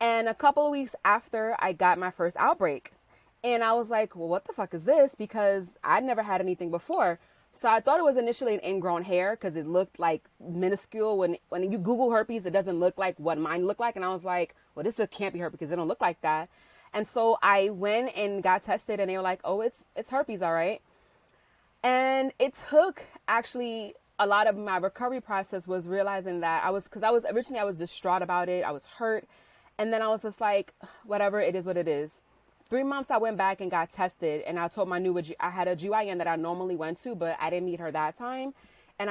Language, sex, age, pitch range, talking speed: English, female, 20-39, 180-220 Hz, 240 wpm